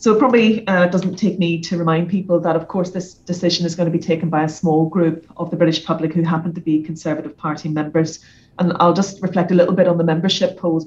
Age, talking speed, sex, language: 30-49, 255 wpm, female, English